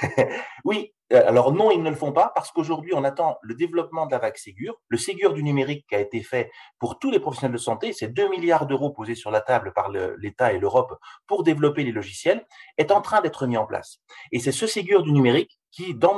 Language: French